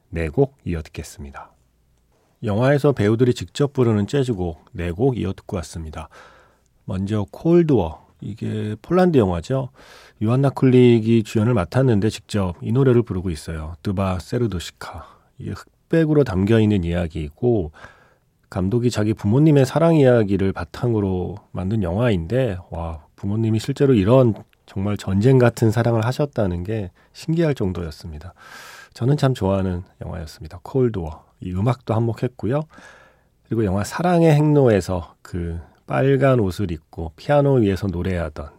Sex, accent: male, native